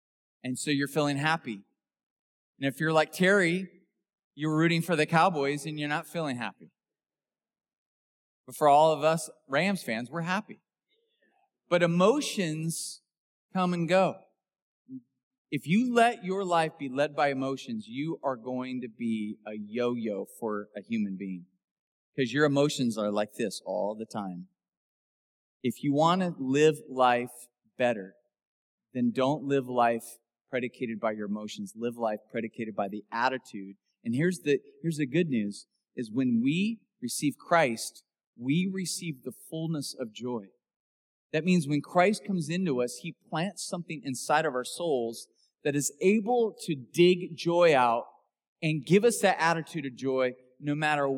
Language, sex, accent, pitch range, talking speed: English, male, American, 120-170 Hz, 155 wpm